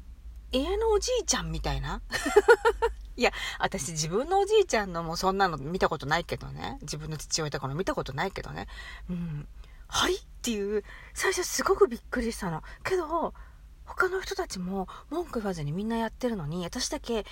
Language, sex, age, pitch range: Japanese, female, 40-59, 150-250 Hz